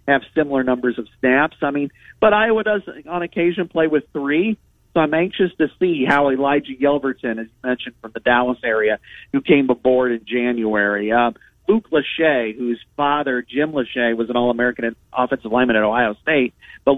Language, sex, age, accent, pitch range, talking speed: English, male, 40-59, American, 120-150 Hz, 175 wpm